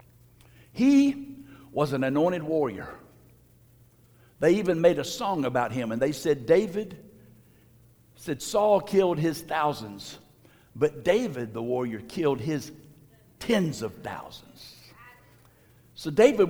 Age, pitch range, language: 60-79, 120-170 Hz, English